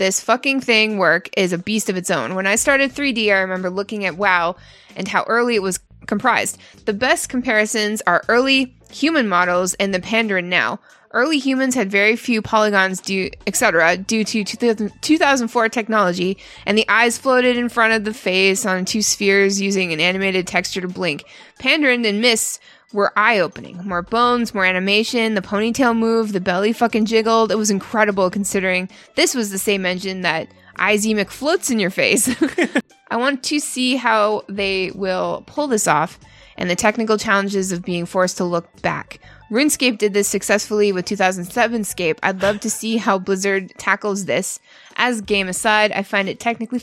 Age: 20-39